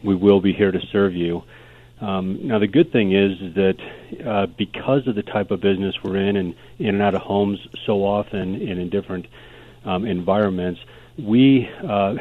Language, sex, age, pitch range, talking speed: English, male, 40-59, 90-100 Hz, 185 wpm